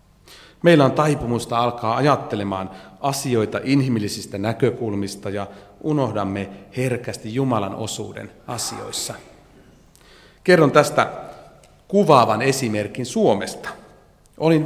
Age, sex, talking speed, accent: 40-59, male, 80 wpm, native